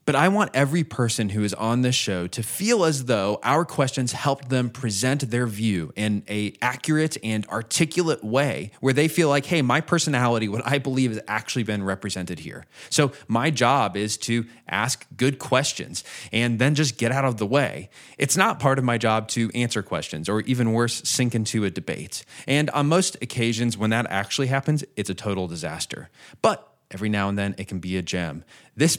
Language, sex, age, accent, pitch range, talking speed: English, male, 20-39, American, 110-140 Hz, 200 wpm